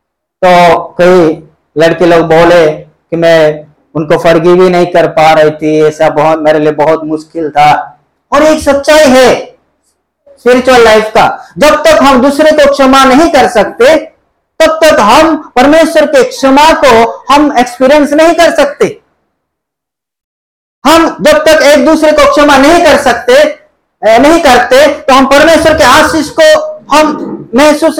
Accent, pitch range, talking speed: native, 185-305 Hz, 150 wpm